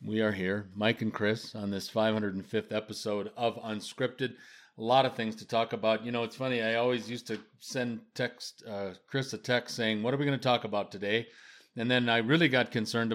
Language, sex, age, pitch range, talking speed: English, male, 40-59, 110-140 Hz, 220 wpm